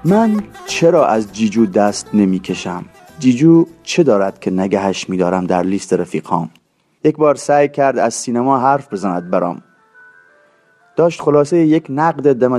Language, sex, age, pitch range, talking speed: Persian, male, 30-49, 105-140 Hz, 145 wpm